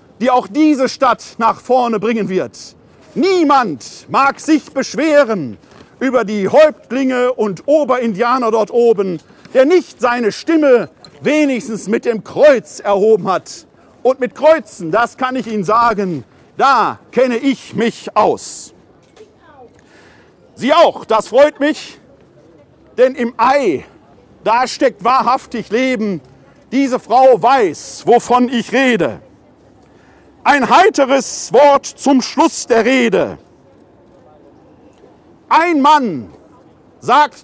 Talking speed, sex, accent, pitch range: 110 wpm, male, German, 230-280 Hz